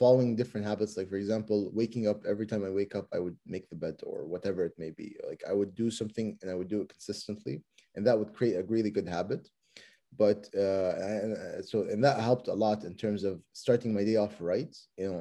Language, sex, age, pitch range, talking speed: English, male, 20-39, 105-125 Hz, 245 wpm